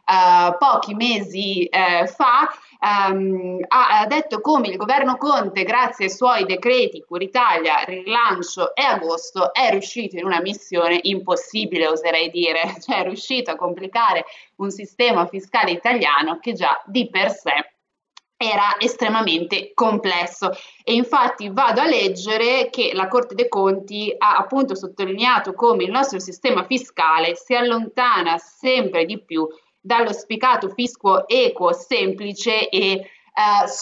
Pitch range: 185-245 Hz